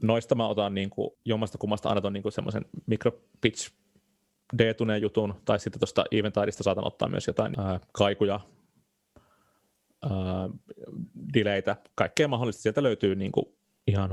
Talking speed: 145 wpm